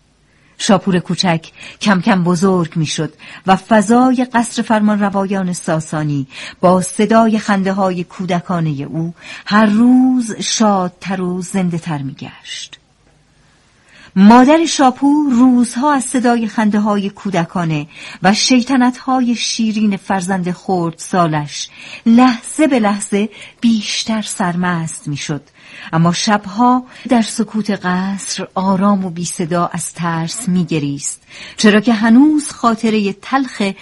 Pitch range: 170-225 Hz